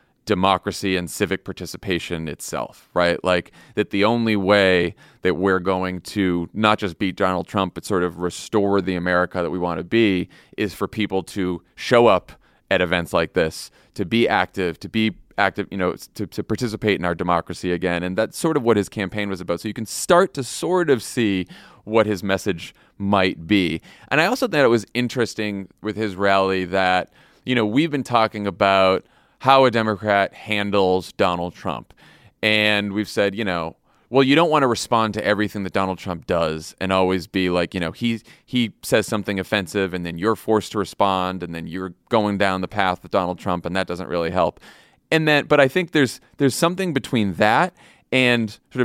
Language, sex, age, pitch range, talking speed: English, male, 30-49, 90-115 Hz, 200 wpm